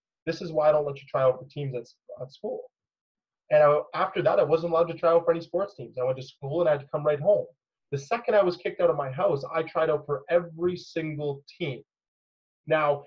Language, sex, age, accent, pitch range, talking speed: English, male, 20-39, American, 135-185 Hz, 250 wpm